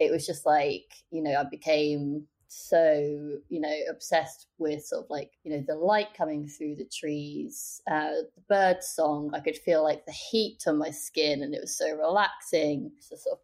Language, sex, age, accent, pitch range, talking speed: English, female, 30-49, British, 150-180 Hz, 205 wpm